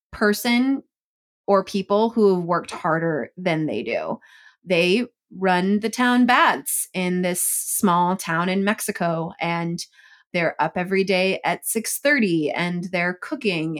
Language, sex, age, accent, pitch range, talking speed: English, female, 20-39, American, 175-220 Hz, 135 wpm